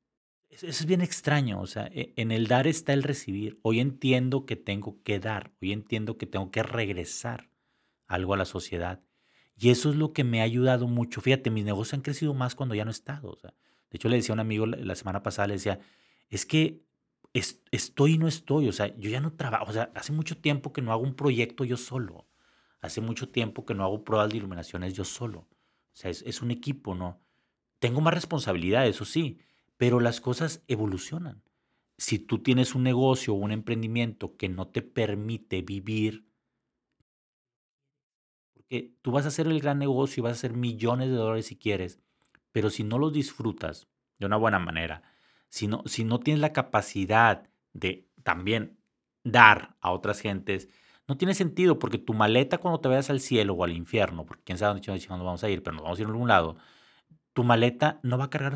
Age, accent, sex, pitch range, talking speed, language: 40-59, Mexican, male, 100-135 Hz, 205 wpm, Spanish